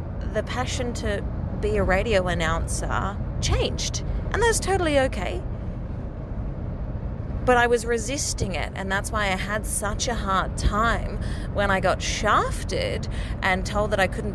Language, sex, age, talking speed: English, female, 30-49, 145 wpm